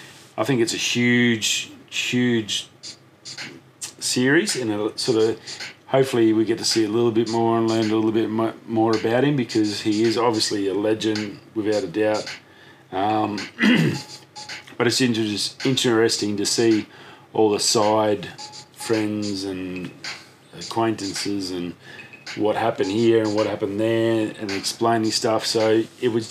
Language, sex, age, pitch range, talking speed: English, male, 40-59, 105-125 Hz, 145 wpm